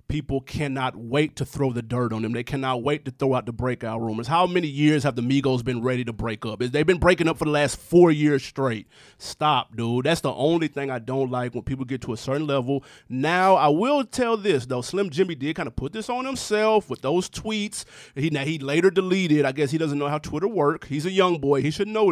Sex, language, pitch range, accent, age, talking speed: male, English, 130-165 Hz, American, 30-49, 250 wpm